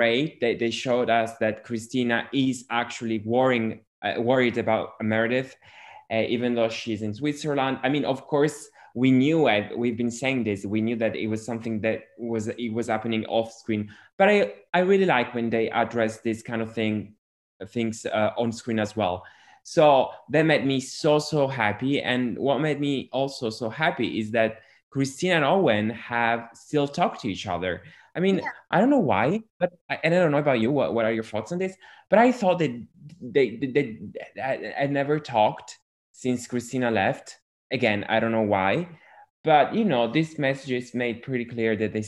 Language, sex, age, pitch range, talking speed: English, male, 20-39, 110-140 Hz, 195 wpm